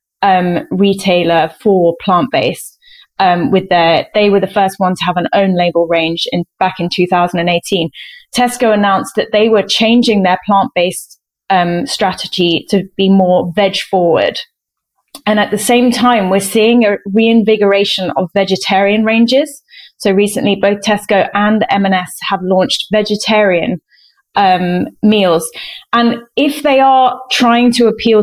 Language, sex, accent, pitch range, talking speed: English, female, British, 190-235 Hz, 140 wpm